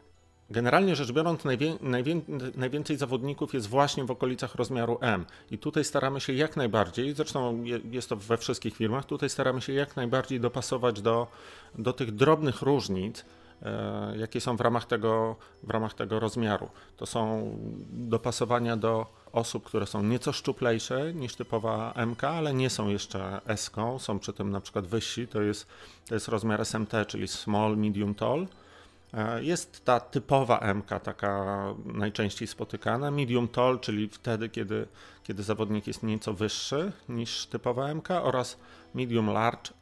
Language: Polish